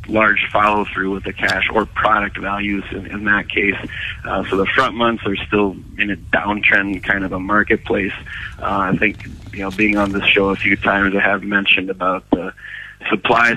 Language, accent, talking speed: English, American, 195 wpm